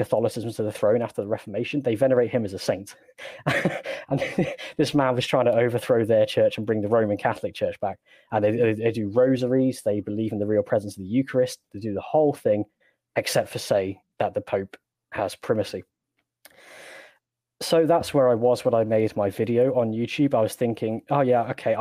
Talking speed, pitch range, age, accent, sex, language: 205 wpm, 105-125 Hz, 10-29, British, male, English